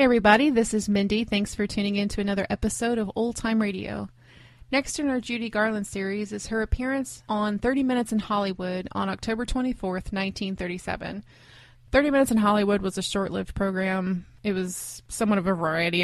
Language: English